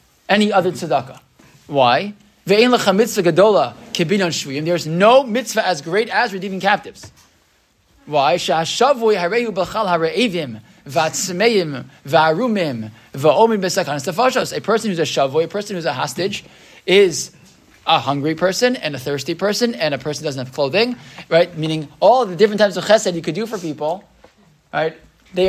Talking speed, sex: 125 wpm, male